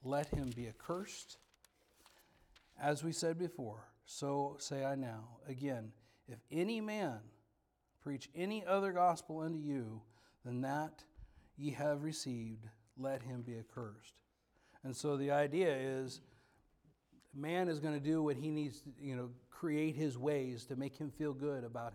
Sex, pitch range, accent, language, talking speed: male, 125-155 Hz, American, English, 150 wpm